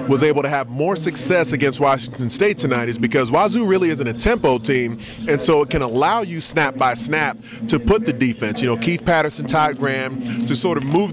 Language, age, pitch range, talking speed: English, 30-49, 120-145 Hz, 220 wpm